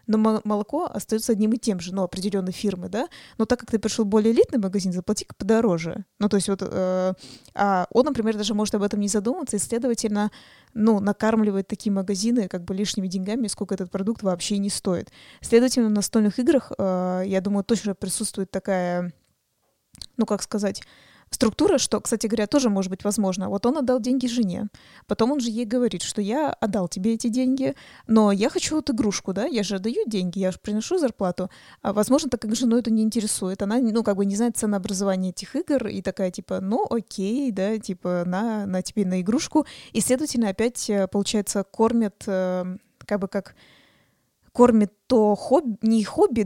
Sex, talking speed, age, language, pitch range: female, 190 wpm, 20-39, Russian, 195-230 Hz